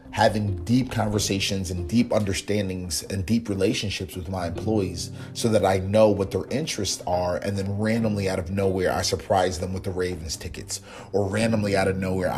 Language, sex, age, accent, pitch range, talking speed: English, male, 30-49, American, 95-110 Hz, 185 wpm